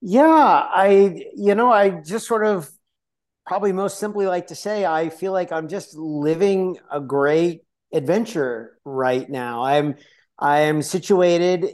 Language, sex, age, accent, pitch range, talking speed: English, male, 50-69, American, 140-170 Hz, 150 wpm